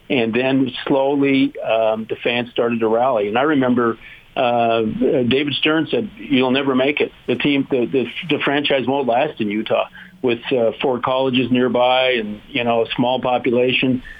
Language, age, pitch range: English, 50-69, 115-135 Hz